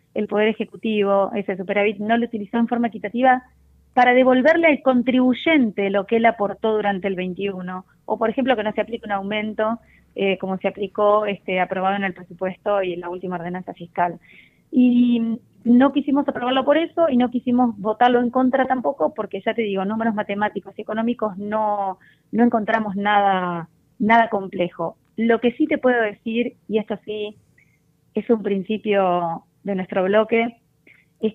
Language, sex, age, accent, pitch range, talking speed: Spanish, female, 20-39, Argentinian, 190-230 Hz, 170 wpm